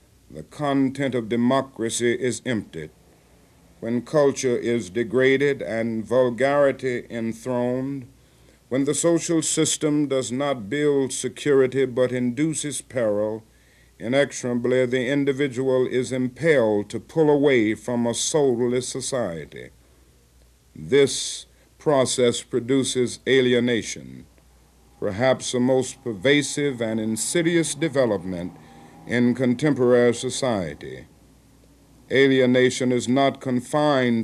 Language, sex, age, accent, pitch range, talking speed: English, male, 60-79, American, 115-135 Hz, 95 wpm